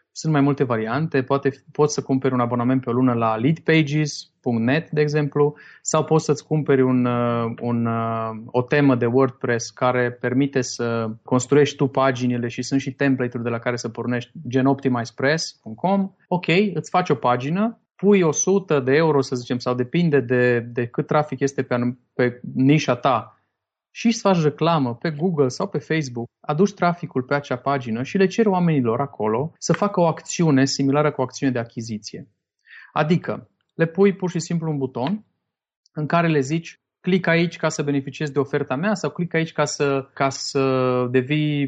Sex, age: male, 30-49